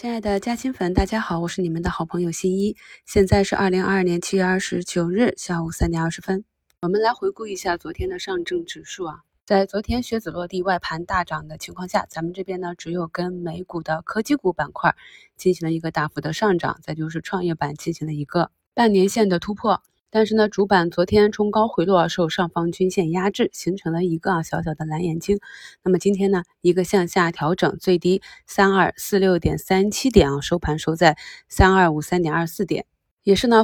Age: 20-39